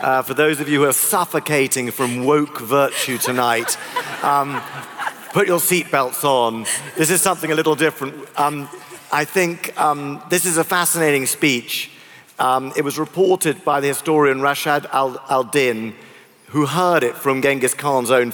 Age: 40-59